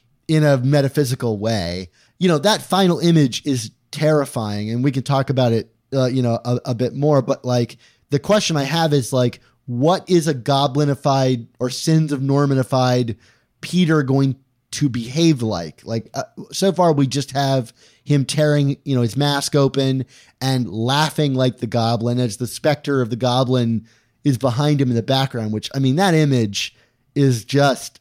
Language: English